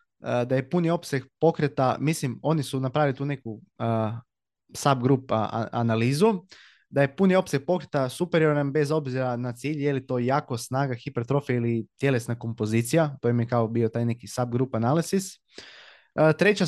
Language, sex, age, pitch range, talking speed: Croatian, male, 20-39, 120-150 Hz, 160 wpm